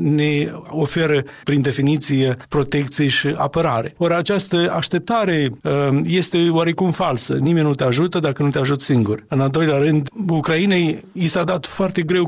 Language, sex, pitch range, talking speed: Romanian, male, 135-165 Hz, 155 wpm